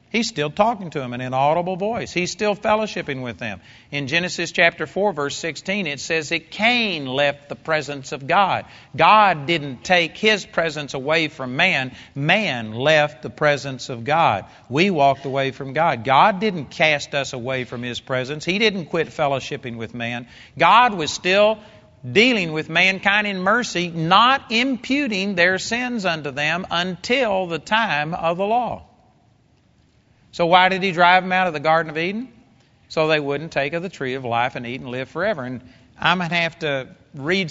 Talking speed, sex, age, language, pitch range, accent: 185 wpm, male, 50-69, English, 135-185 Hz, American